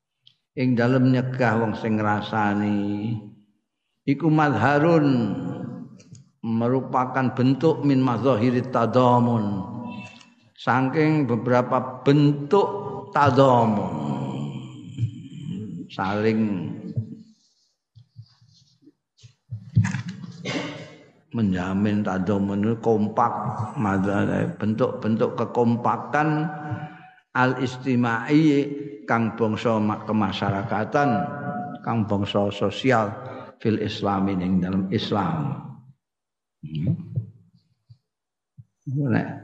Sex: male